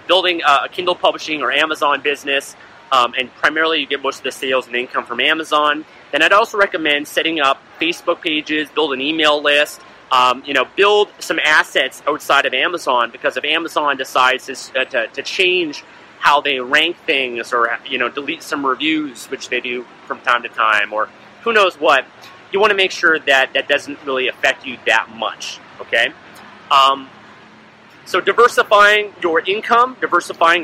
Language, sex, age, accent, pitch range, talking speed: English, male, 30-49, American, 130-170 Hz, 180 wpm